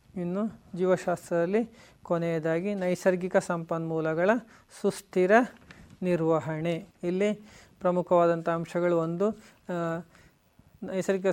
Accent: native